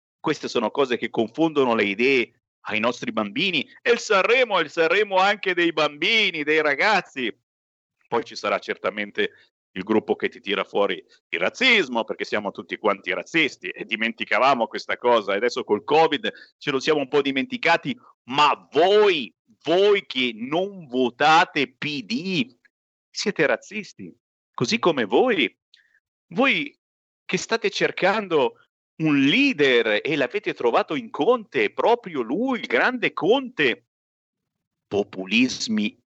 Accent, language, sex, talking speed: native, Italian, male, 135 wpm